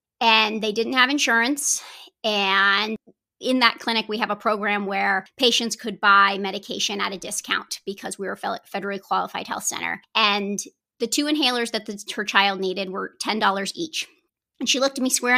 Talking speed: 185 wpm